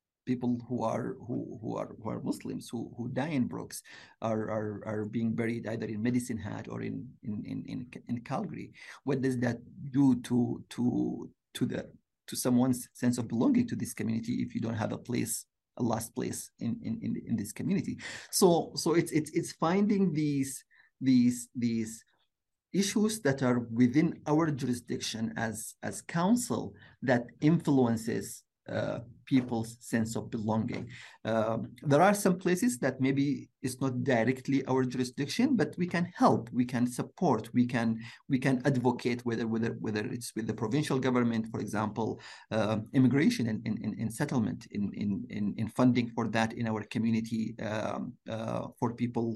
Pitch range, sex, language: 115-130 Hz, male, English